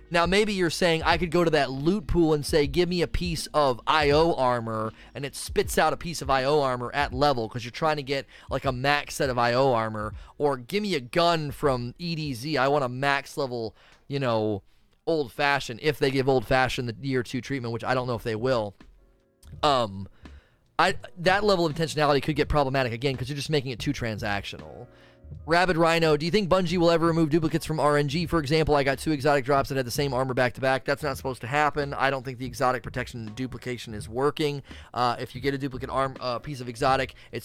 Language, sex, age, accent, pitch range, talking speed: English, male, 30-49, American, 120-150 Hz, 230 wpm